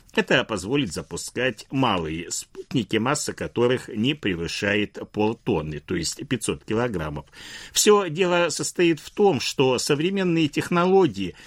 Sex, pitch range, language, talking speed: male, 100-165 Hz, Russian, 115 wpm